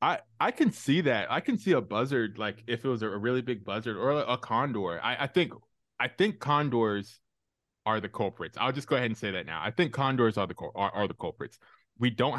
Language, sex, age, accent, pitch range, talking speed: English, male, 20-39, American, 100-125 Hz, 240 wpm